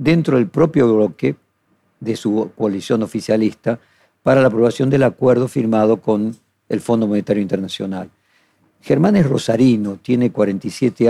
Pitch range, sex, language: 110-135 Hz, male, Spanish